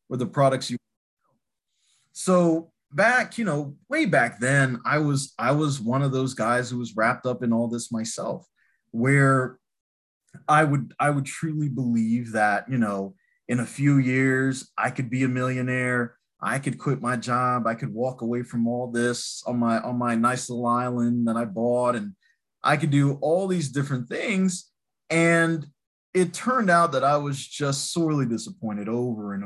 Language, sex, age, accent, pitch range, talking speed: English, male, 20-39, American, 115-150 Hz, 180 wpm